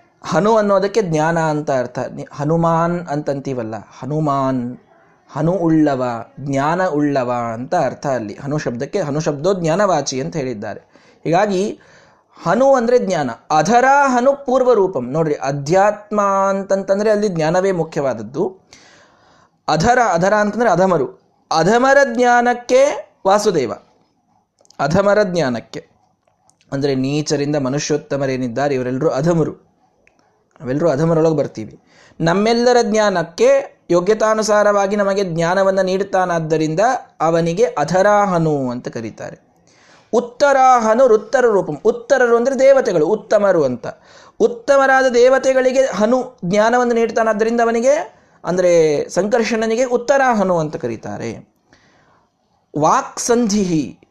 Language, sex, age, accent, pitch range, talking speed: Kannada, male, 20-39, native, 150-235 Hz, 90 wpm